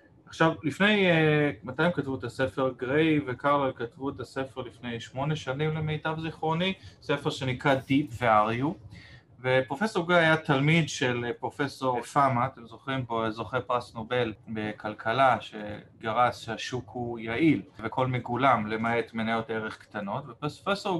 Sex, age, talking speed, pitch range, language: male, 30-49, 125 wpm, 115-150 Hz, Hebrew